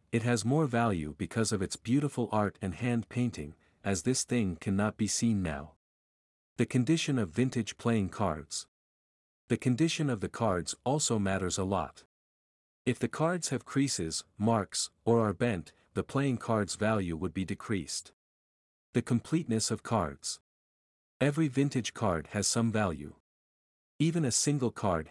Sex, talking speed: male, 155 wpm